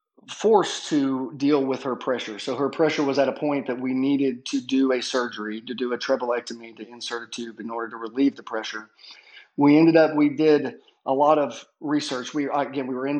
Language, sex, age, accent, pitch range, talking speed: English, male, 40-59, American, 125-150 Hz, 220 wpm